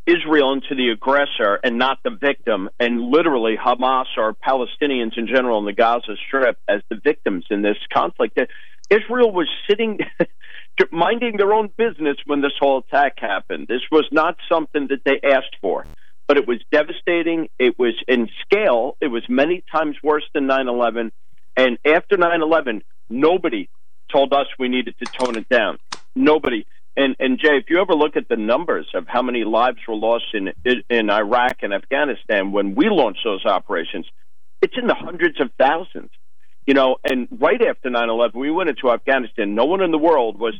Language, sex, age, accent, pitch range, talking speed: English, male, 50-69, American, 120-155 Hz, 180 wpm